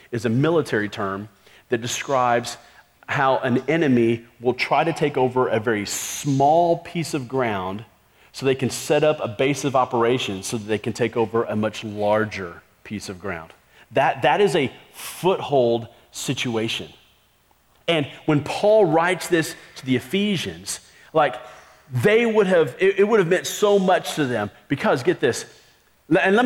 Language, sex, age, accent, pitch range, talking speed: English, male, 40-59, American, 120-165 Hz, 165 wpm